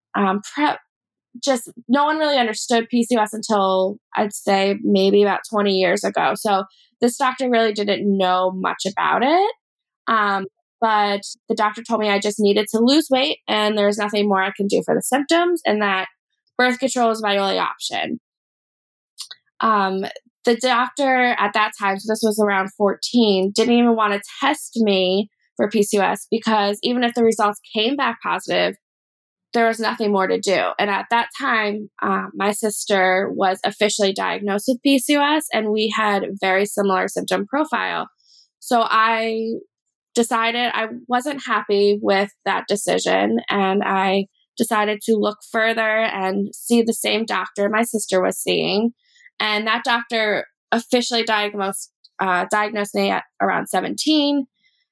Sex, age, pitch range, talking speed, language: female, 10-29, 200-240 Hz, 155 wpm, English